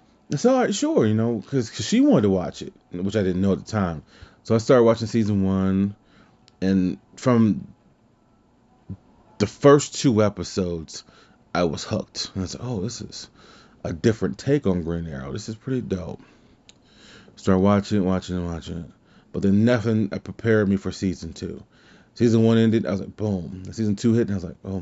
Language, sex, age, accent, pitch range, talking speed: English, male, 30-49, American, 90-110 Hz, 200 wpm